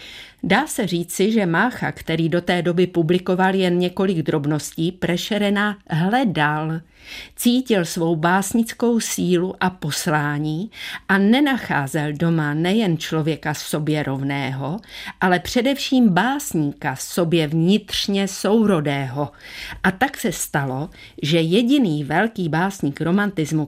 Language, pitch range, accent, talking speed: Czech, 155-200 Hz, native, 110 wpm